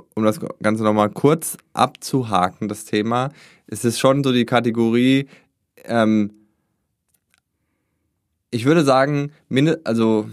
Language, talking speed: German, 115 wpm